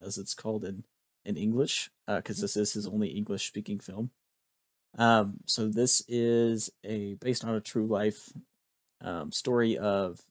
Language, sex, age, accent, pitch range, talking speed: English, male, 30-49, American, 100-115 Hz, 165 wpm